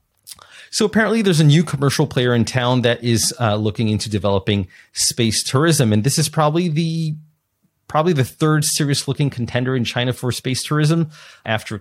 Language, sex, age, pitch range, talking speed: English, male, 30-49, 105-130 Hz, 170 wpm